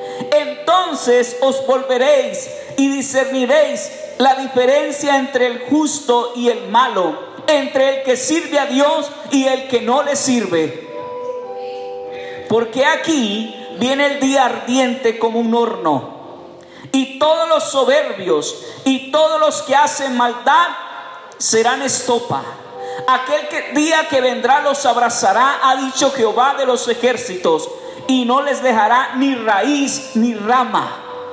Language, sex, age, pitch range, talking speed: Spanish, male, 50-69, 250-300 Hz, 125 wpm